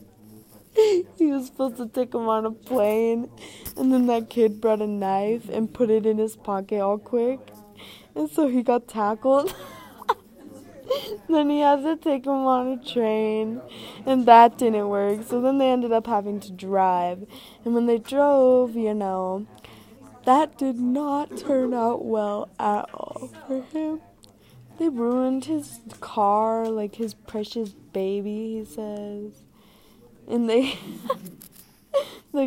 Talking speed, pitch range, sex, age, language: 145 wpm, 195-245 Hz, female, 20-39, English